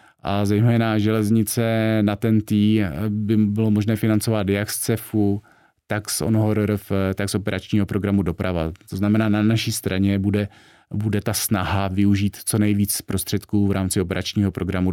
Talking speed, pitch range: 150 wpm, 95-105 Hz